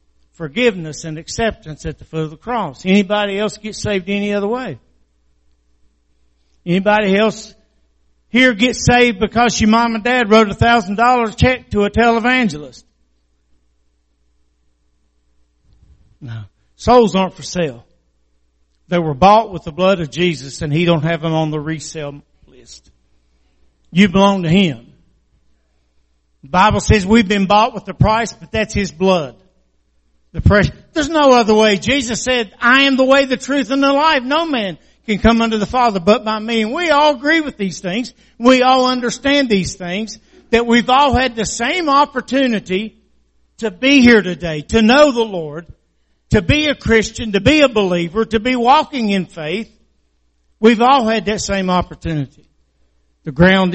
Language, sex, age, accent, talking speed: English, male, 50-69, American, 165 wpm